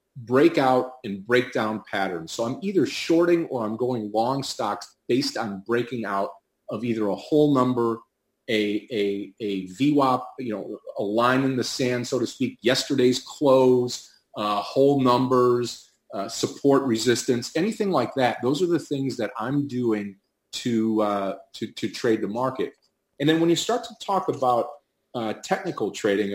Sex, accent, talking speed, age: male, American, 165 wpm, 40-59